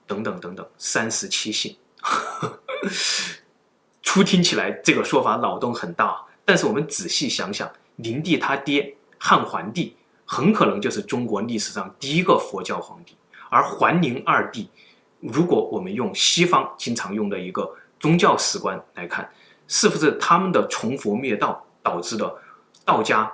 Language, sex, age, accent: Chinese, male, 20-39, native